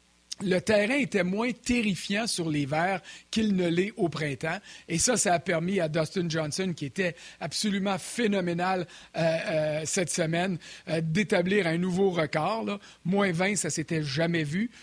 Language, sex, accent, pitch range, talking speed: French, male, Canadian, 165-215 Hz, 165 wpm